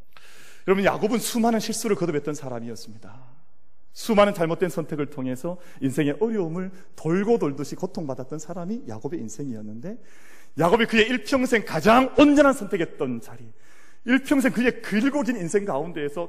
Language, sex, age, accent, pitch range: Korean, male, 40-59, native, 130-185 Hz